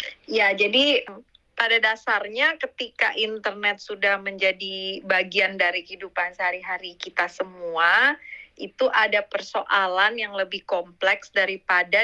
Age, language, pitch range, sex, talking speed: 30-49, Indonesian, 185-220 Hz, female, 105 wpm